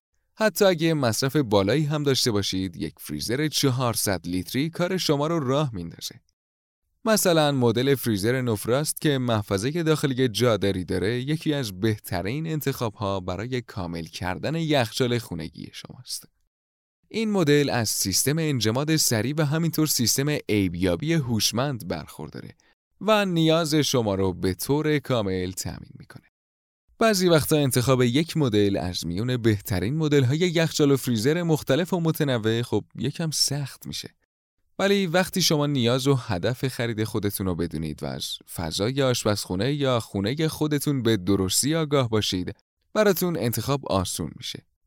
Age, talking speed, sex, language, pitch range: 30-49, 135 wpm, male, Persian, 95-150 Hz